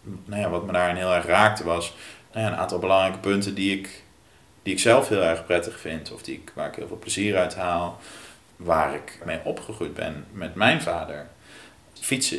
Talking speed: 210 wpm